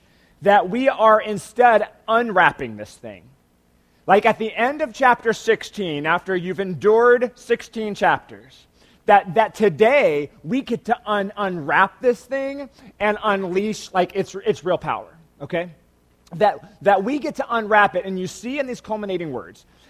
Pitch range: 170-225 Hz